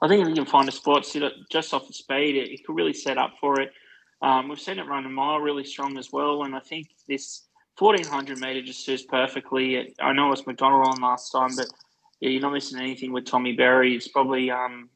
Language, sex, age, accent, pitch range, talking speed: English, male, 20-39, Australian, 125-140 Hz, 240 wpm